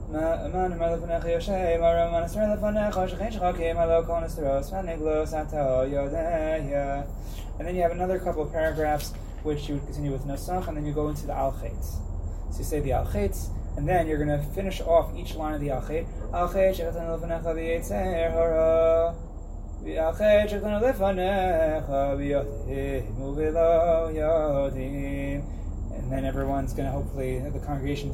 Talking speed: 100 wpm